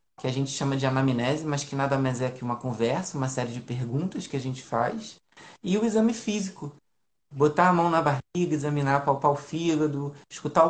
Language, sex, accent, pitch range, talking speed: Portuguese, male, Brazilian, 140-175 Hz, 200 wpm